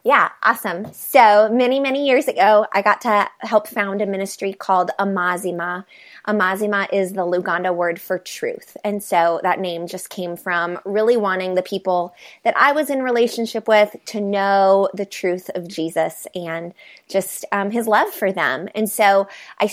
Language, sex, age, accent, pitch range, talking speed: English, female, 20-39, American, 180-210 Hz, 170 wpm